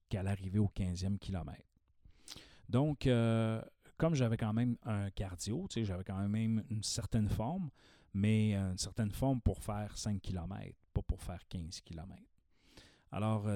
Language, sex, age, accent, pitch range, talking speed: French, male, 40-59, Canadian, 95-110 Hz, 155 wpm